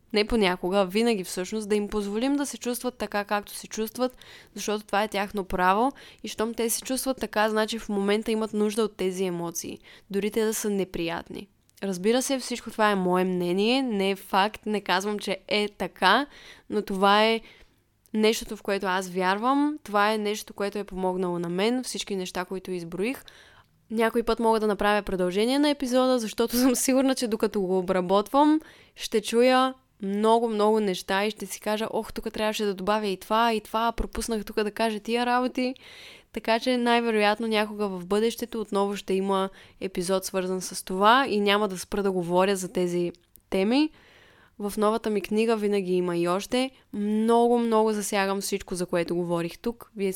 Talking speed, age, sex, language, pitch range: 180 wpm, 20-39, female, Bulgarian, 190-230 Hz